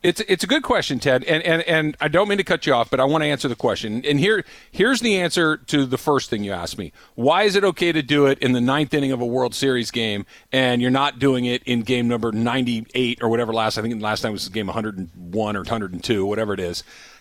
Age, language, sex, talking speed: 40-59, English, male, 285 wpm